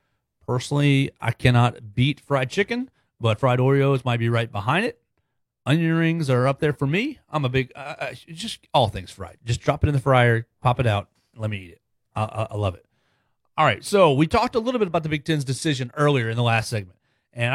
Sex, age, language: male, 30-49, English